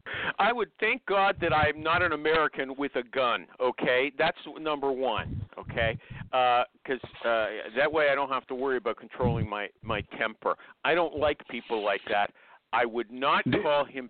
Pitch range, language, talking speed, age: 125-170 Hz, English, 180 wpm, 50-69